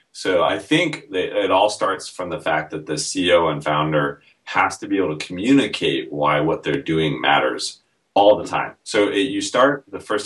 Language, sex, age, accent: English, male, 30-49, American